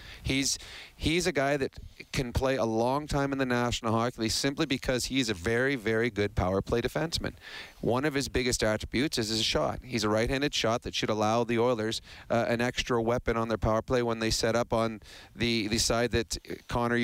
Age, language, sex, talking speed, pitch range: 40-59, English, male, 210 wpm, 115-135 Hz